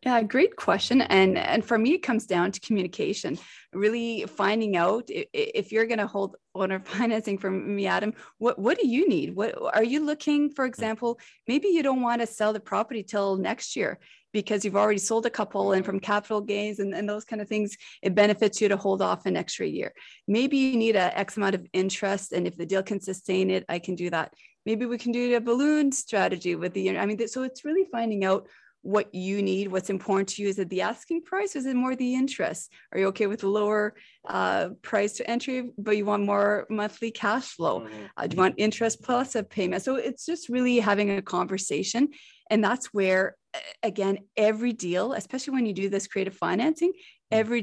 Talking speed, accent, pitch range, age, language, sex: 215 wpm, American, 195-235 Hz, 30-49, English, female